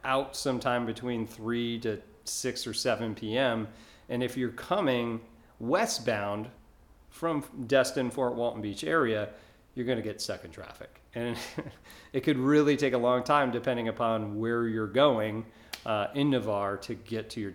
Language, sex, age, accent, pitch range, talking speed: English, male, 40-59, American, 110-140 Hz, 155 wpm